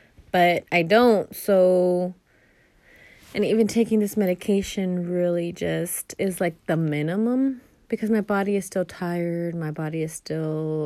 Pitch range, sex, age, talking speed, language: 165-205 Hz, female, 30-49, 140 wpm, English